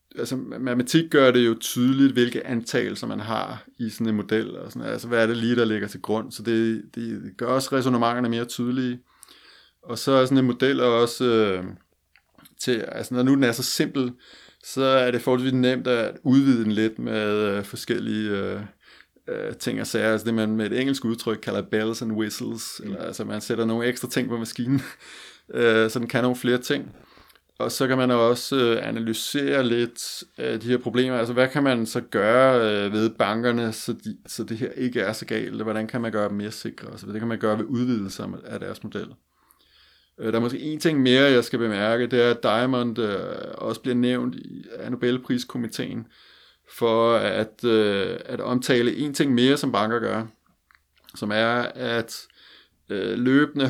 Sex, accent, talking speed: male, native, 190 wpm